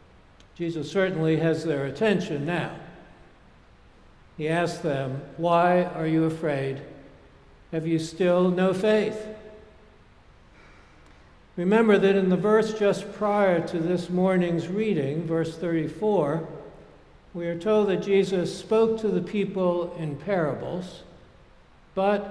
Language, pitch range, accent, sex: English, 160-195 Hz, American, male